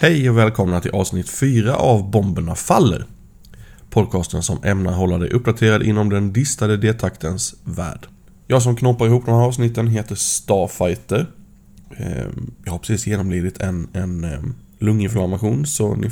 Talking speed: 140 wpm